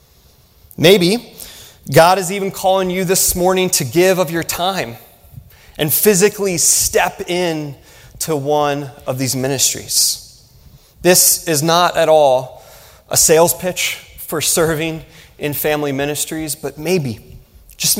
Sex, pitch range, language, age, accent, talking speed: male, 125-160 Hz, English, 30-49, American, 125 wpm